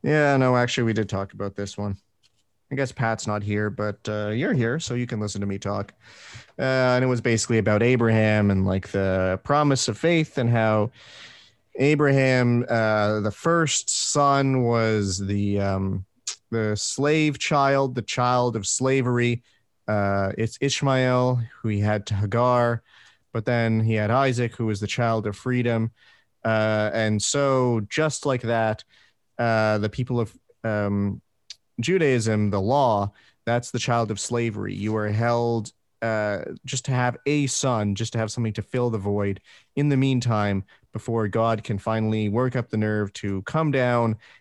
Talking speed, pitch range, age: 170 wpm, 105-125 Hz, 30-49